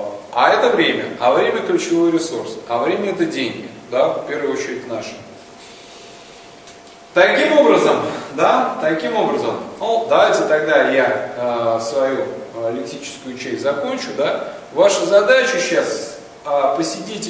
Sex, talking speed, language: male, 135 wpm, Russian